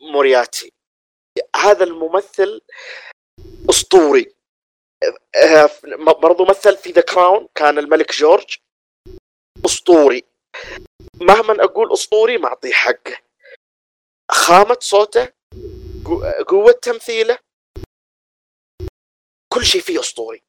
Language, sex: Arabic, male